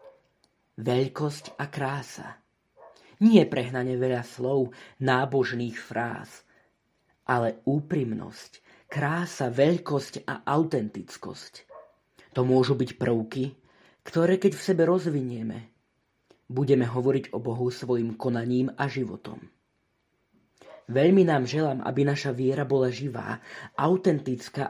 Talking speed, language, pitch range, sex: 100 wpm, Slovak, 125-155 Hz, male